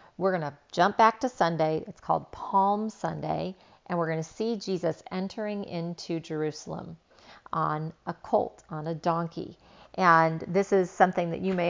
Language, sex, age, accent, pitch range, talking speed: English, female, 40-59, American, 165-195 Hz, 170 wpm